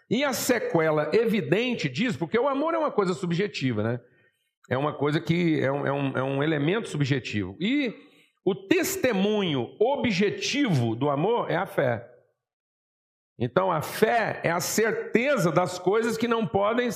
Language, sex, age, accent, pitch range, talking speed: Portuguese, male, 50-69, Brazilian, 155-225 Hz, 150 wpm